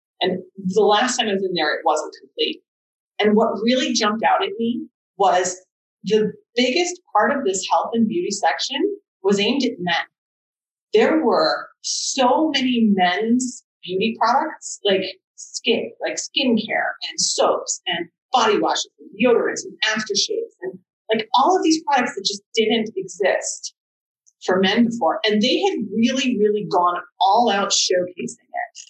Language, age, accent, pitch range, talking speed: English, 30-49, American, 200-335 Hz, 155 wpm